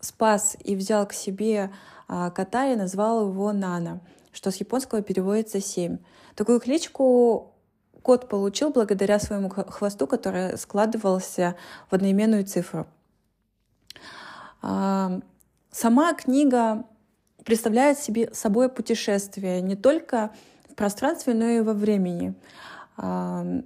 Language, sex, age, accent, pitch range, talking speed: Russian, female, 20-39, native, 190-235 Hz, 110 wpm